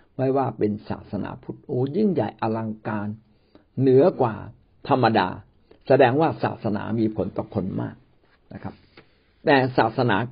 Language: Thai